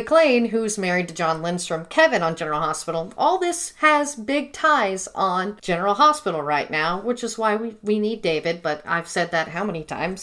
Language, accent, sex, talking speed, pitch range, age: English, American, female, 200 wpm, 175-235 Hz, 40-59